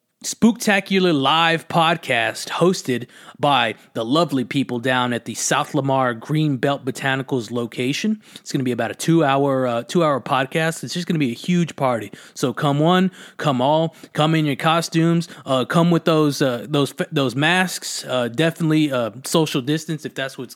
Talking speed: 180 wpm